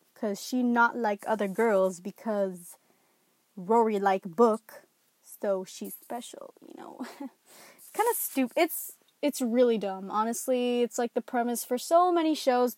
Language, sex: English, female